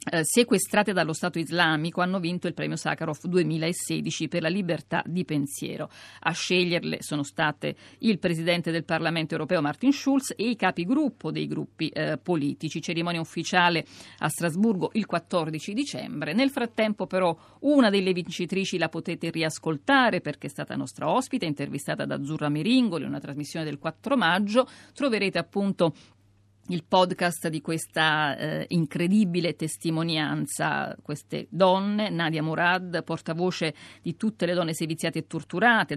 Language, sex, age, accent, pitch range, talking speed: Italian, female, 50-69, native, 155-180 Hz, 140 wpm